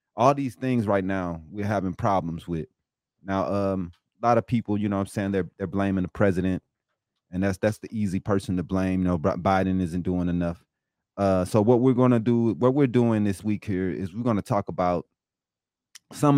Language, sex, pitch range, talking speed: English, male, 90-110 Hz, 215 wpm